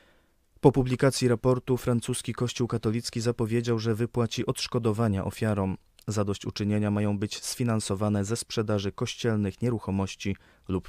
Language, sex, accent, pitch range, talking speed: Polish, male, native, 100-115 Hz, 110 wpm